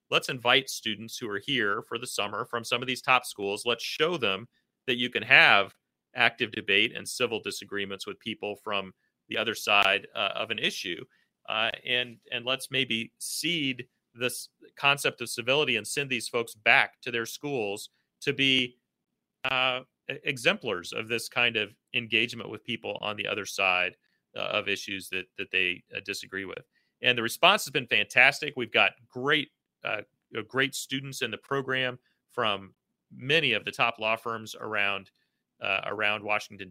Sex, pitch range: male, 105-130 Hz